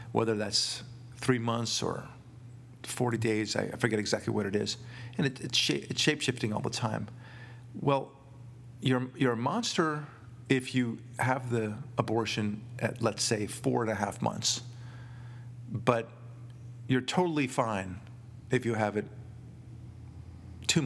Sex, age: male, 40-59